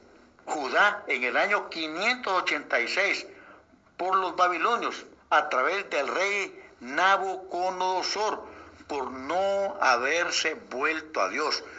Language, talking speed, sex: Spanish, 95 wpm, male